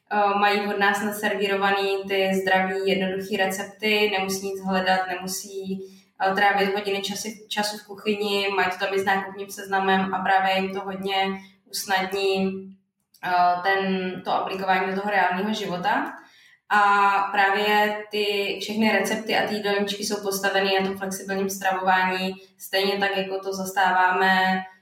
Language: Czech